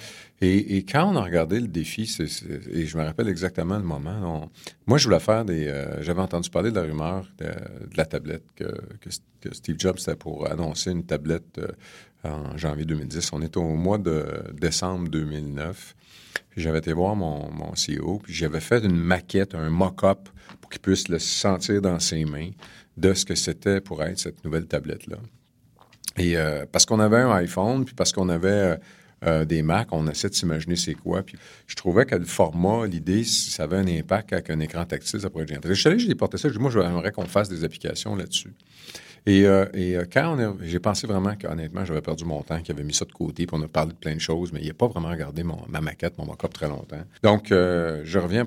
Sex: male